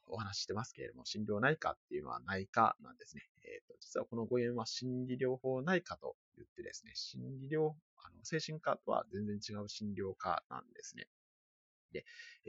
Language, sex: Japanese, male